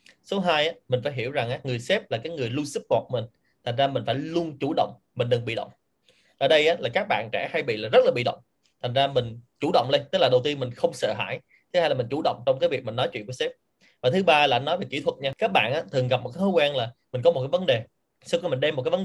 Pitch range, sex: 125-200 Hz, male